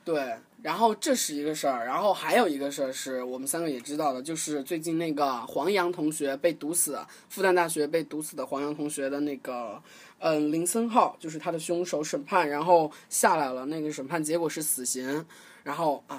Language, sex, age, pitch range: Chinese, male, 20-39, 145-190 Hz